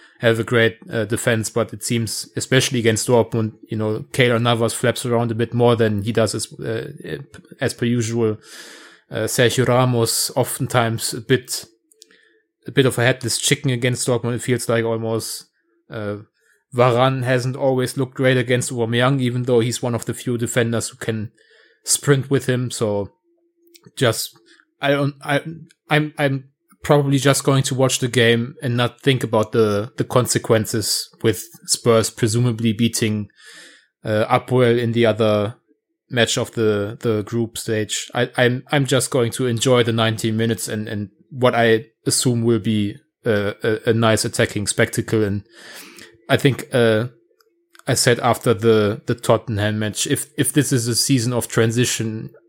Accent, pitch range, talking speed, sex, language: German, 115-130 Hz, 165 wpm, male, English